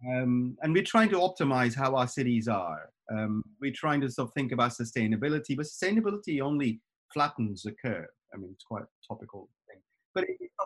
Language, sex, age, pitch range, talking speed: English, male, 30-49, 120-165 Hz, 190 wpm